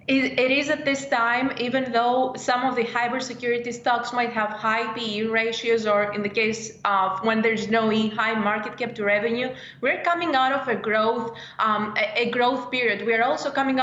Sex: female